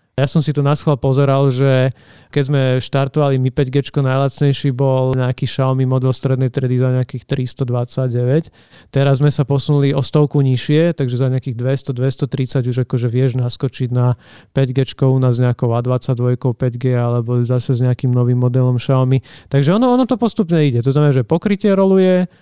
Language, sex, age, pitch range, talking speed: Slovak, male, 40-59, 130-150 Hz, 170 wpm